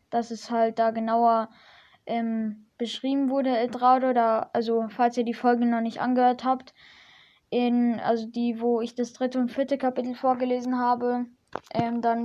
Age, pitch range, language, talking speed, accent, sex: 10-29, 235-260 Hz, German, 165 wpm, German, female